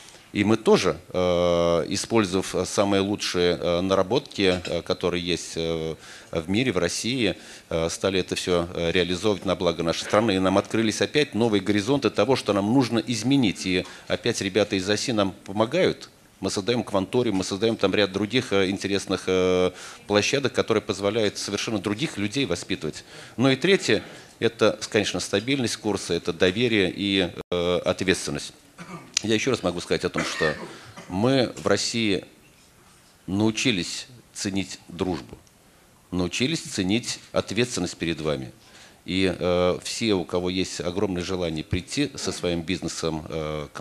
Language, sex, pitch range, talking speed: Russian, male, 90-105 Hz, 135 wpm